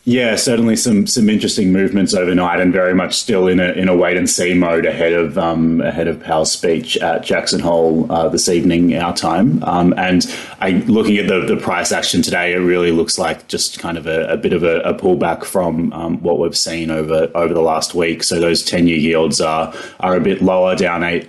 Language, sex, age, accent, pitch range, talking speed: English, male, 20-39, Australian, 80-90 Hz, 225 wpm